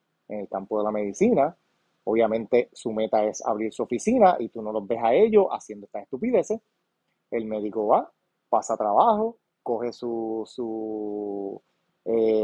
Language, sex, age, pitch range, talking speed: Spanish, male, 30-49, 115-175 Hz, 160 wpm